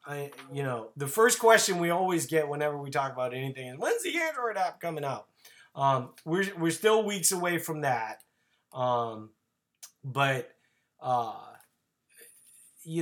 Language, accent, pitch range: English, American, 140-225 Hz